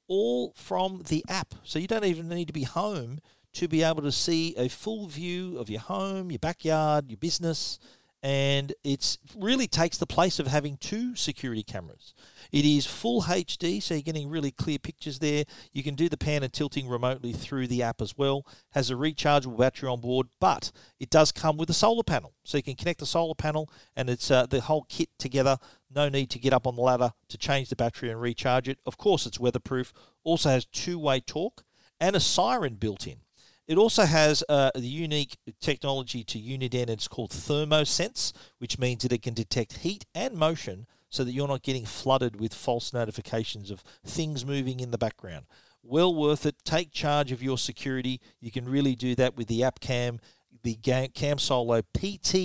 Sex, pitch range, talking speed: male, 125-160 Hz, 200 wpm